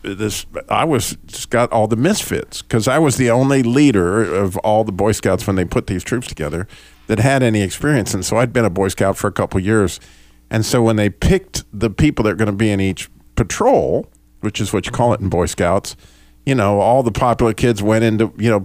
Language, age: English, 50-69